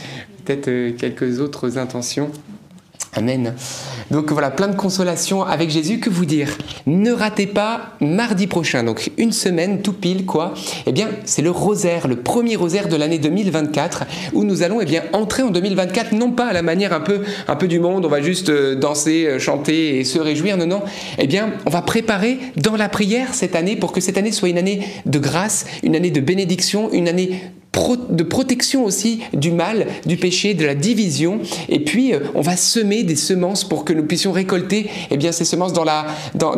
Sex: male